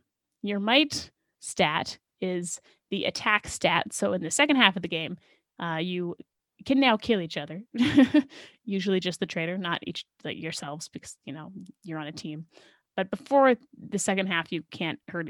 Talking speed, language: 175 wpm, English